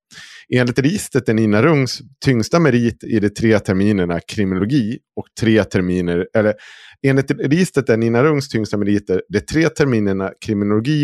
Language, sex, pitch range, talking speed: Swedish, male, 90-125 Hz, 130 wpm